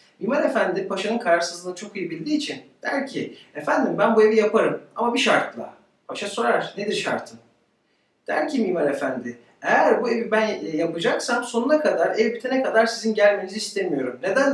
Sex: male